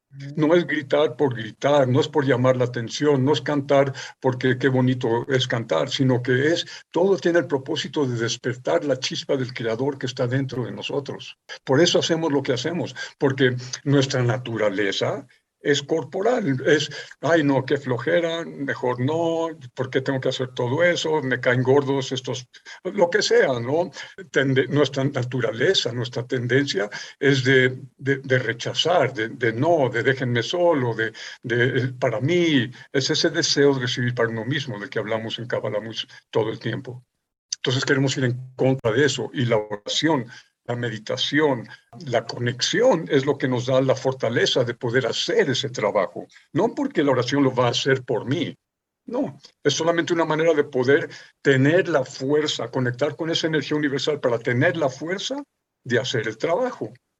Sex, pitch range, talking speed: male, 125-155 Hz, 175 wpm